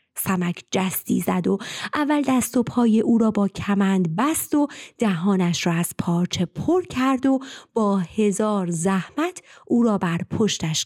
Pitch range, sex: 180-270 Hz, female